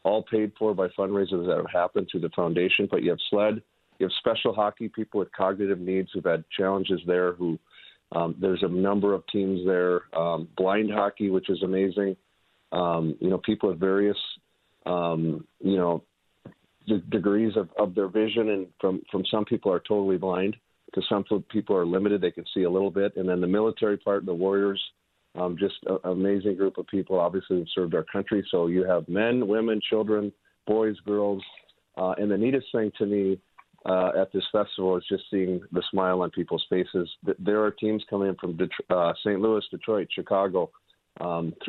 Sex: male